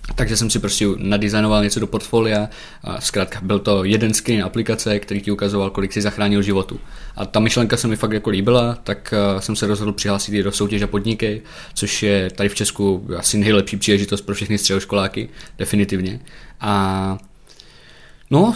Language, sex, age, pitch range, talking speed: Czech, male, 20-39, 100-110 Hz, 170 wpm